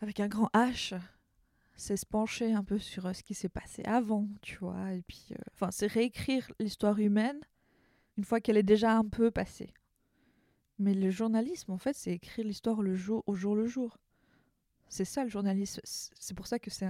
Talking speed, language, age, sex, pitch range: 200 wpm, French, 20-39, female, 195-230 Hz